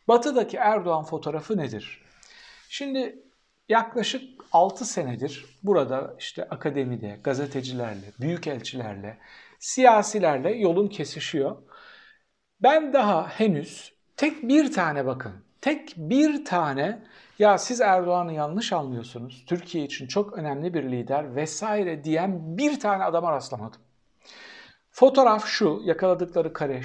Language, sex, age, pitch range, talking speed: Turkish, male, 60-79, 150-235 Hz, 105 wpm